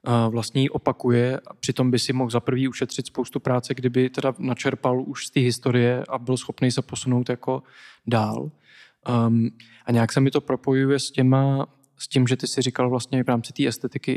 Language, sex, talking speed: Czech, male, 195 wpm